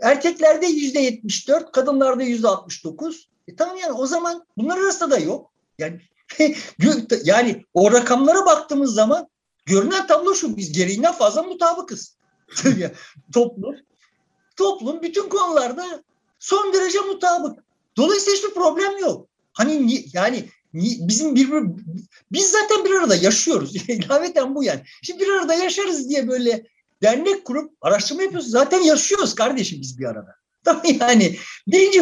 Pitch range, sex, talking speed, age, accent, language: 230-345 Hz, male, 135 wpm, 50-69, native, Turkish